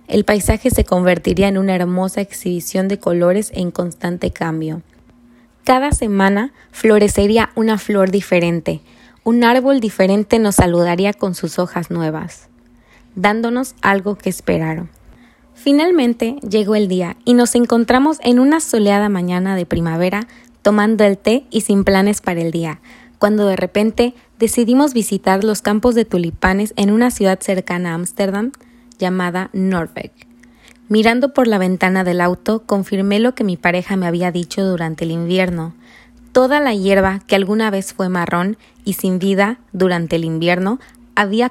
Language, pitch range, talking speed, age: Spanish, 180-230 Hz, 150 wpm, 20-39